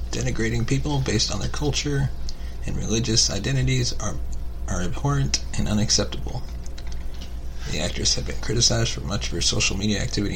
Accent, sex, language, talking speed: American, male, English, 150 wpm